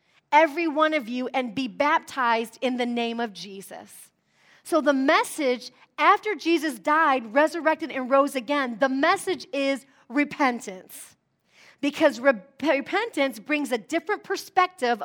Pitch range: 235-305 Hz